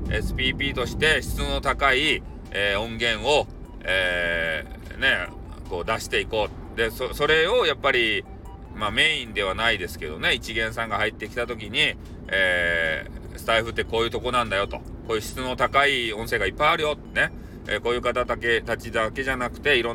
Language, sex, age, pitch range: Japanese, male, 40-59, 100-125 Hz